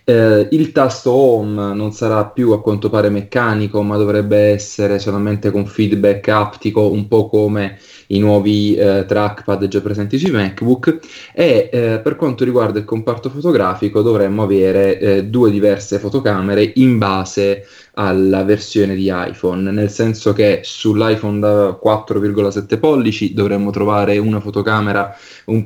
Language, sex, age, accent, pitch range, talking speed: Italian, male, 20-39, native, 100-105 Hz, 145 wpm